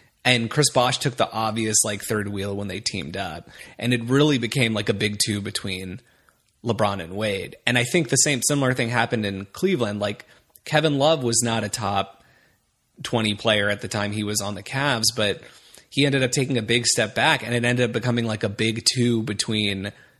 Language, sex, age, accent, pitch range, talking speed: English, male, 30-49, American, 110-155 Hz, 210 wpm